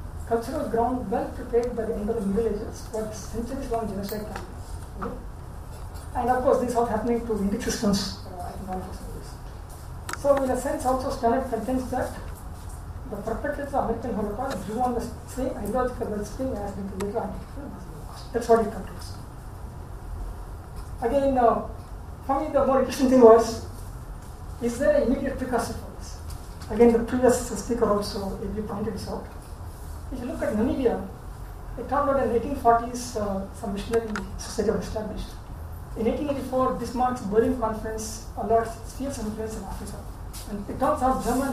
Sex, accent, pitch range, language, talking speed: female, Indian, 210-250 Hz, English, 170 wpm